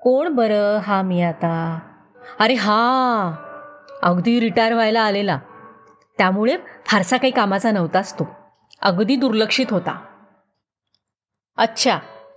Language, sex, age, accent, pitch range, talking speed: Marathi, female, 30-49, native, 195-295 Hz, 100 wpm